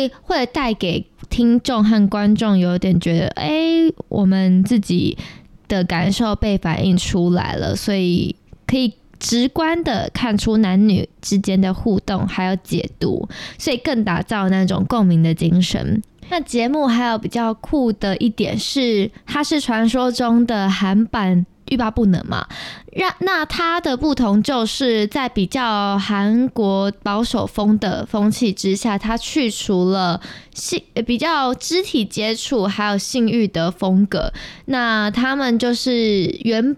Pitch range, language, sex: 190-240 Hz, Chinese, female